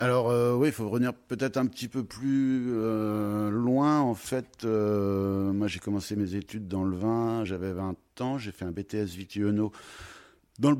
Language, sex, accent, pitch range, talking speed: French, male, French, 90-115 Hz, 190 wpm